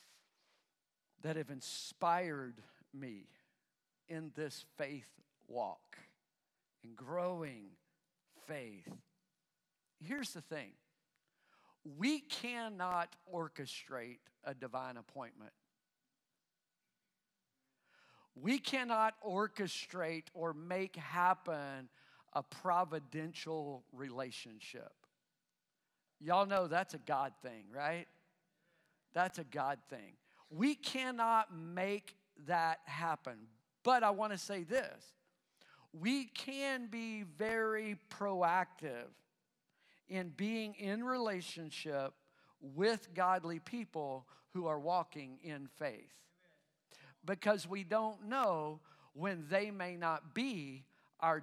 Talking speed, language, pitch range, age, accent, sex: 90 wpm, English, 150-205 Hz, 50-69, American, male